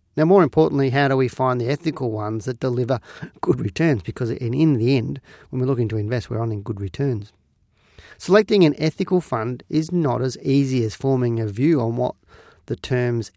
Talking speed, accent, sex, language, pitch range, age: 195 wpm, Australian, male, English, 110-145 Hz, 40-59